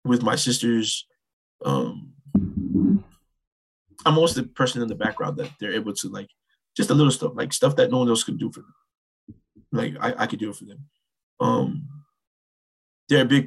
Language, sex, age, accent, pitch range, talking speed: English, male, 20-39, American, 100-135 Hz, 185 wpm